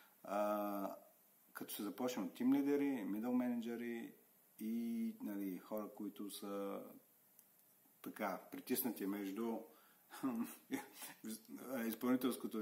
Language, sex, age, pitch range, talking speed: Bulgarian, male, 50-69, 105-140 Hz, 85 wpm